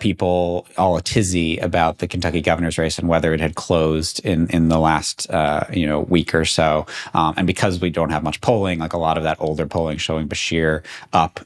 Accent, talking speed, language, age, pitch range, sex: American, 220 wpm, English, 30-49, 80-100 Hz, male